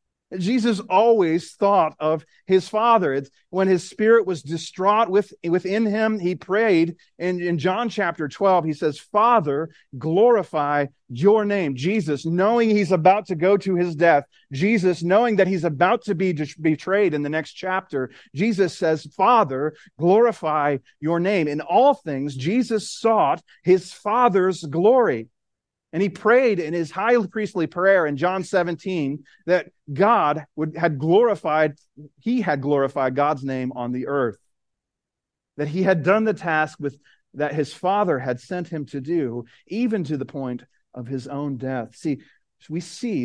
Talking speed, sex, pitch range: 155 wpm, male, 140-195 Hz